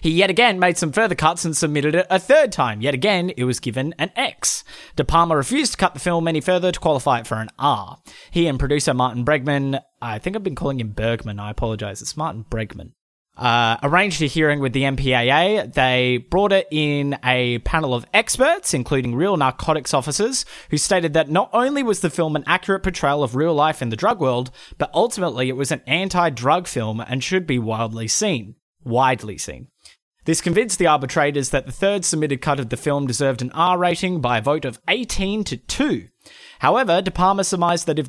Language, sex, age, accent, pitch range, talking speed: English, male, 20-39, Australian, 130-190 Hz, 210 wpm